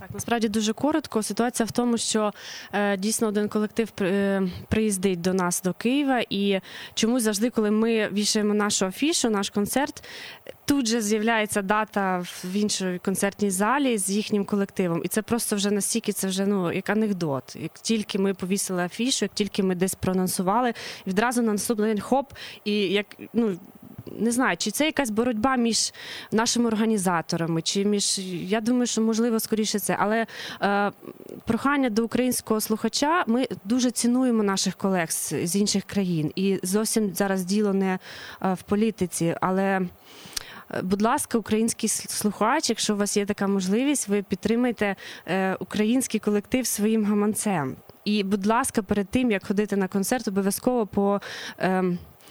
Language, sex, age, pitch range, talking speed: Russian, female, 20-39, 195-230 Hz, 155 wpm